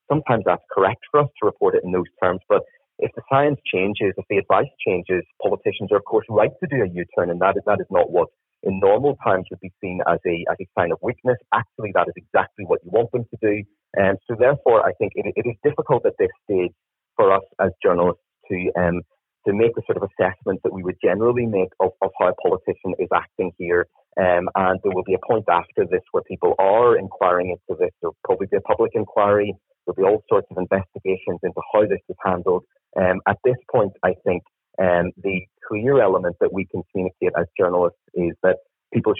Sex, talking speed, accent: male, 230 wpm, British